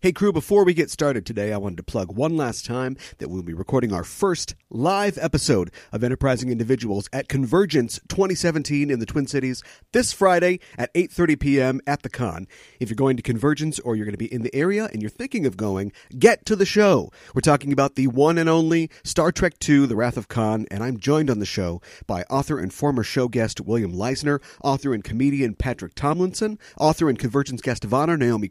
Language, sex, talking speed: English, male, 215 wpm